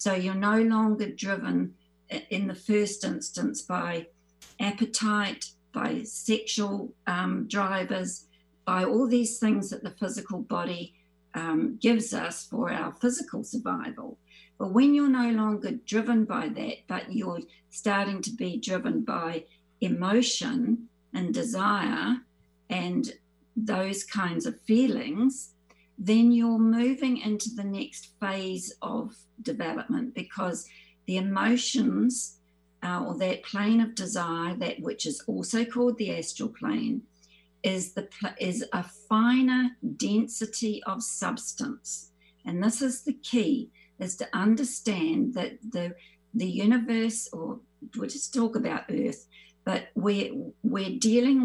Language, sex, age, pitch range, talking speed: English, female, 50-69, 190-245 Hz, 125 wpm